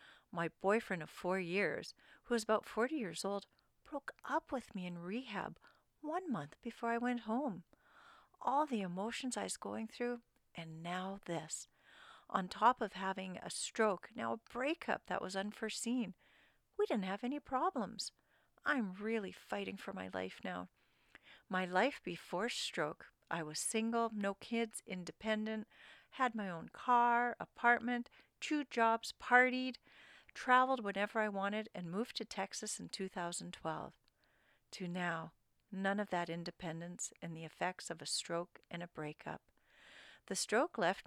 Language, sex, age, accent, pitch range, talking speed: English, female, 40-59, American, 180-235 Hz, 150 wpm